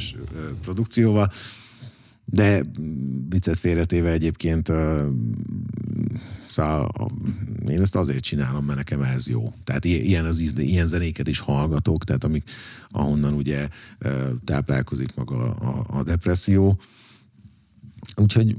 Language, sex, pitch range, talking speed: Hungarian, male, 80-110 Hz, 95 wpm